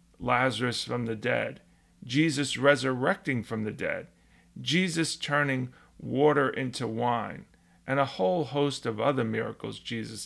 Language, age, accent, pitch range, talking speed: English, 40-59, American, 90-140 Hz, 130 wpm